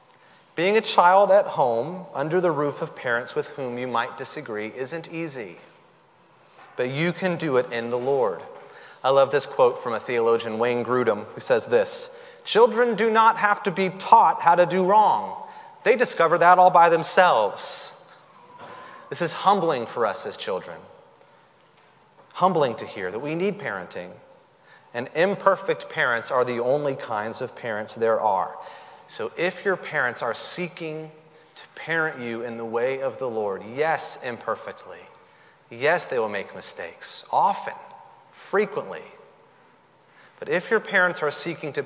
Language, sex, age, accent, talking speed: English, male, 30-49, American, 160 wpm